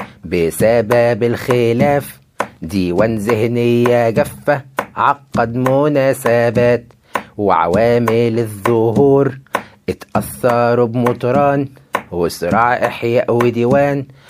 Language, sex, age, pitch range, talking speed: Arabic, male, 30-49, 120-135 Hz, 60 wpm